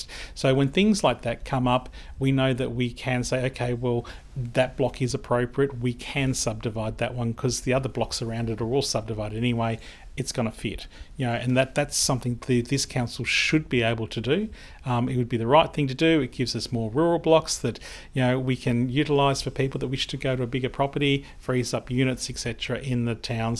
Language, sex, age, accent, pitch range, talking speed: English, male, 40-59, Australian, 120-135 Hz, 230 wpm